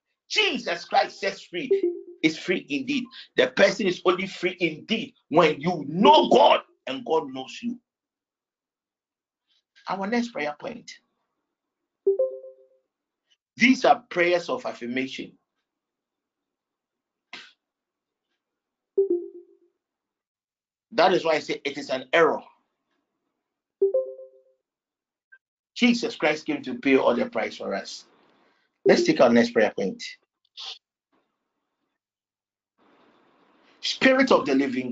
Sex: male